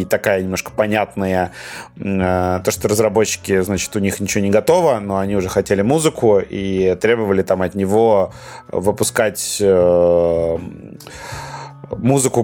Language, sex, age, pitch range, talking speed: Russian, male, 30-49, 95-120 Hz, 120 wpm